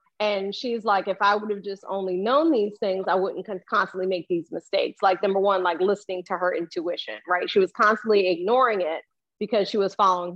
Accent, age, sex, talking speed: American, 30-49, female, 205 wpm